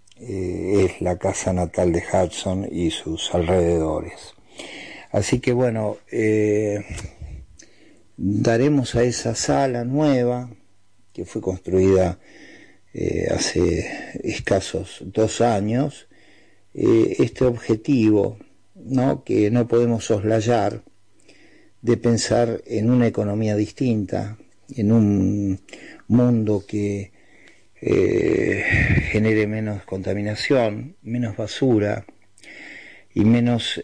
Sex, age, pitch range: male, 50-69, 100-115 Hz